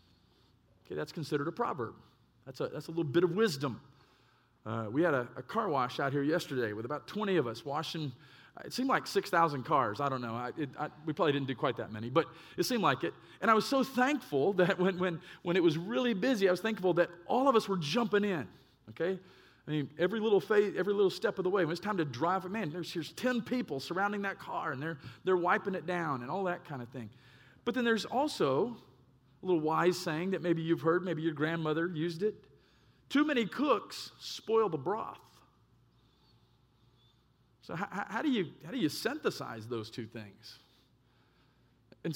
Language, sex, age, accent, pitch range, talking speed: English, male, 40-59, American, 140-205 Hz, 210 wpm